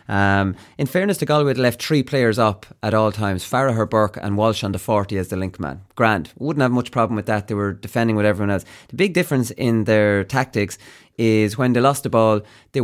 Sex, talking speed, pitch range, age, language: male, 235 wpm, 110-140 Hz, 30-49, English